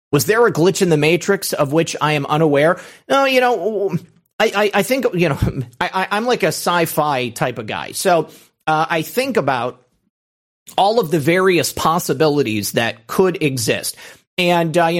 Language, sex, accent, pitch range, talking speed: English, male, American, 145-180 Hz, 180 wpm